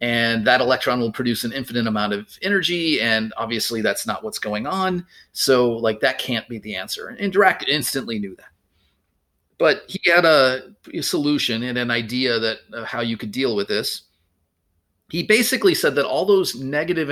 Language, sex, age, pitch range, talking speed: English, male, 30-49, 110-165 Hz, 190 wpm